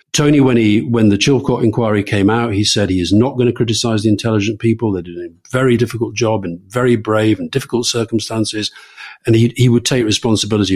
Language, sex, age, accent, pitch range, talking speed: English, male, 50-69, British, 100-125 Hz, 210 wpm